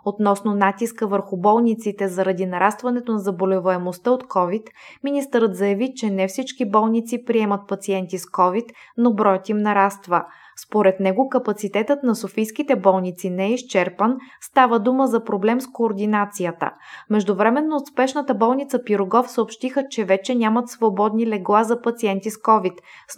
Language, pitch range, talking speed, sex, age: Bulgarian, 200-245 Hz, 140 wpm, female, 20-39